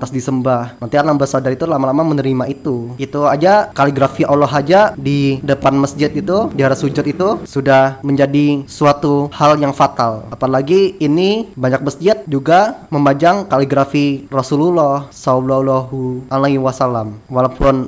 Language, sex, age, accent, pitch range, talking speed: Indonesian, male, 20-39, native, 130-150 Hz, 135 wpm